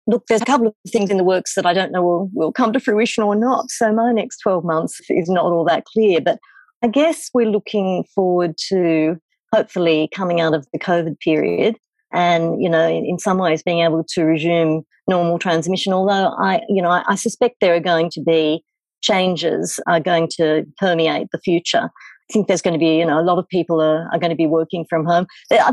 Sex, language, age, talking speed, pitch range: female, English, 50-69, 225 wpm, 170-215 Hz